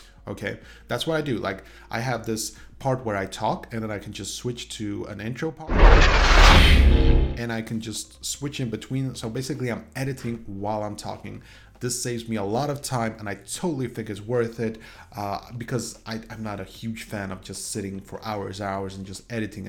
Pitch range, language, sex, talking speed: 100-125 Hz, English, male, 205 wpm